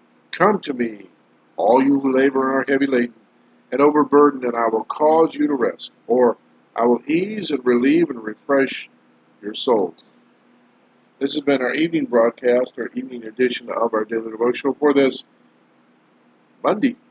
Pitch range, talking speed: 115-140 Hz, 160 wpm